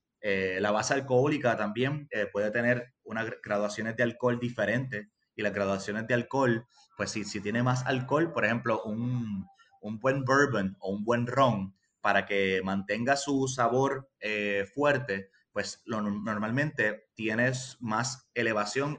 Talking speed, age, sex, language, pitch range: 145 wpm, 30-49, male, Spanish, 100-130 Hz